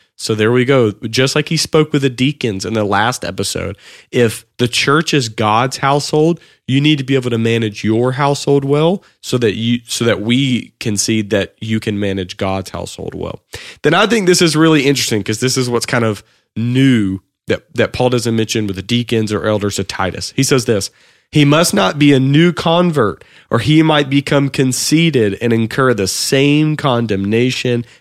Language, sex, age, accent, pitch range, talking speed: English, male, 30-49, American, 110-140 Hz, 195 wpm